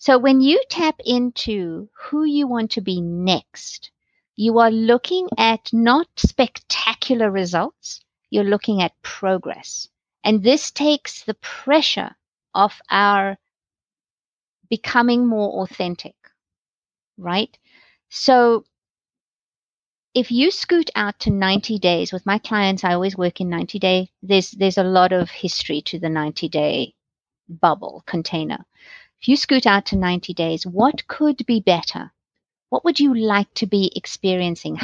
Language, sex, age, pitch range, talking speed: English, female, 50-69, 190-245 Hz, 140 wpm